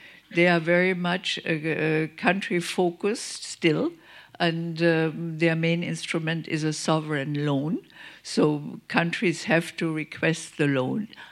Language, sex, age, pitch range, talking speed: English, female, 50-69, 165-200 Hz, 115 wpm